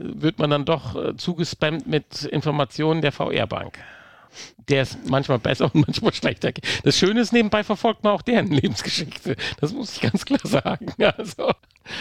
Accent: German